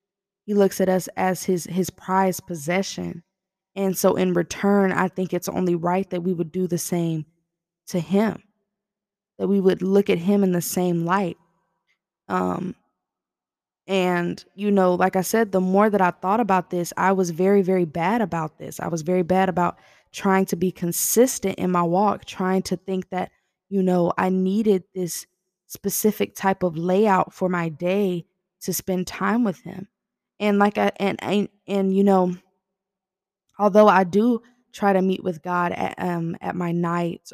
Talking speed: 180 wpm